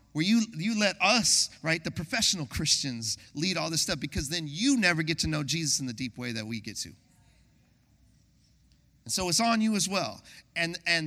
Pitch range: 130-205 Hz